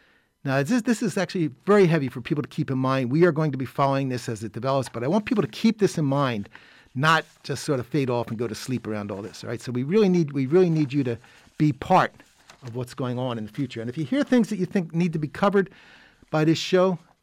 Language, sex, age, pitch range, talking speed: English, male, 50-69, 120-155 Hz, 275 wpm